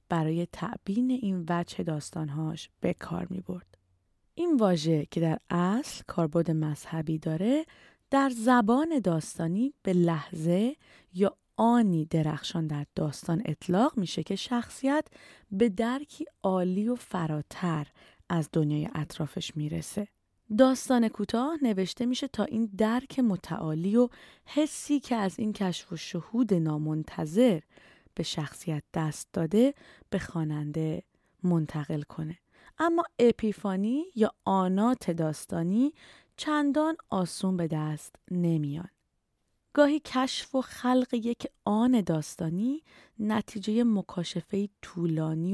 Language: Persian